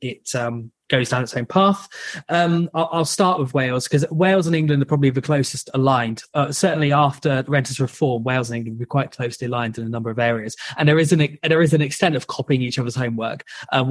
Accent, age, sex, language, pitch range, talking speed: British, 20-39, male, English, 125-155 Hz, 235 wpm